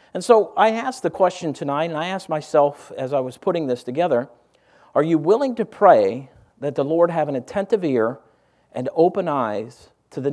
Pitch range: 140-180 Hz